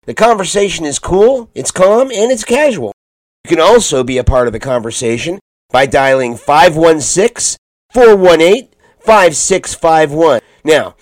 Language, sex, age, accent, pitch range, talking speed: English, male, 50-69, American, 135-200 Hz, 120 wpm